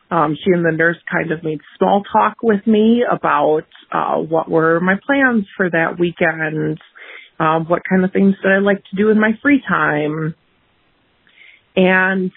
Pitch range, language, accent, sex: 175-210 Hz, English, American, female